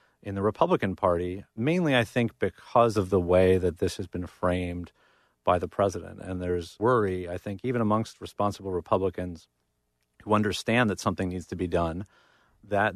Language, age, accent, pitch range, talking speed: English, 40-59, American, 90-110 Hz, 170 wpm